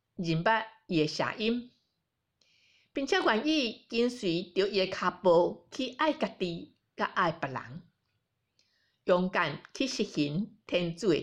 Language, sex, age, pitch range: Chinese, female, 50-69, 160-235 Hz